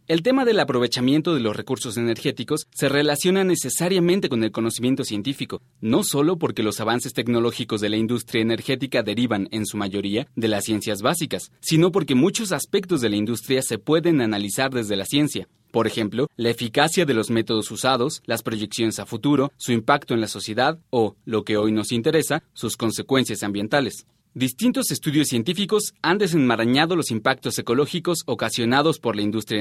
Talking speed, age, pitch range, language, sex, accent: 170 wpm, 30-49, 115-145 Hz, Spanish, male, Mexican